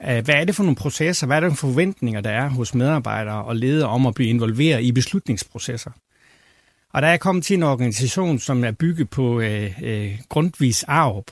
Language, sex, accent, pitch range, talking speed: Danish, male, native, 125-150 Hz, 205 wpm